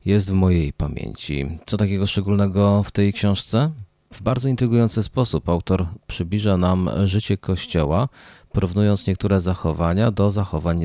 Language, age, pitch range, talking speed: Polish, 30-49, 85-110 Hz, 135 wpm